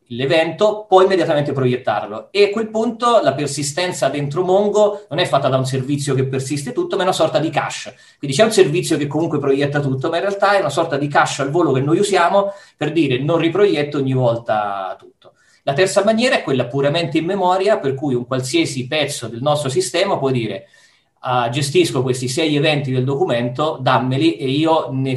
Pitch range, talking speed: 125-165 Hz, 200 wpm